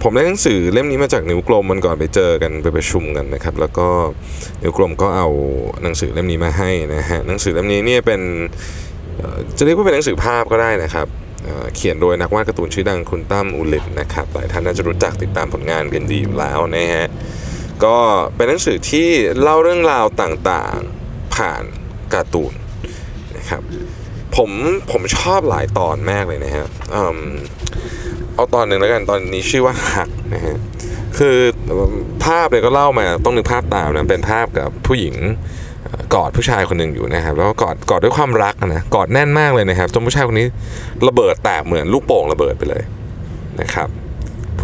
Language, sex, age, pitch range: Thai, male, 20-39, 85-115 Hz